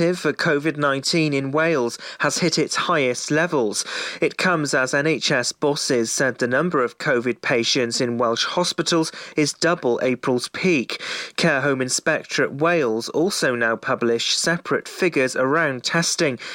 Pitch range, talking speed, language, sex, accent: 130-160 Hz, 140 wpm, English, male, British